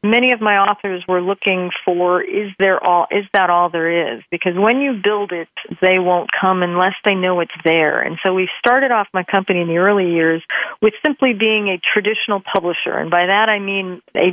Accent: American